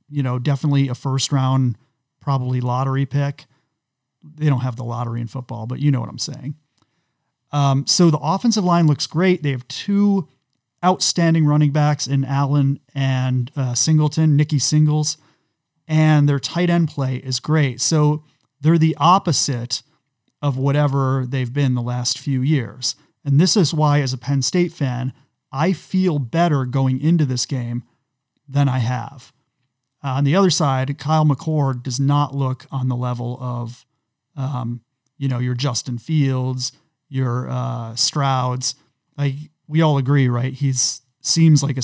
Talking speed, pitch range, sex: 160 wpm, 130-155 Hz, male